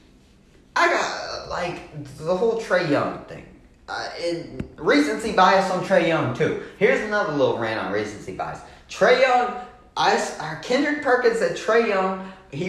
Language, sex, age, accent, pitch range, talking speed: English, male, 20-39, American, 125-205 Hz, 155 wpm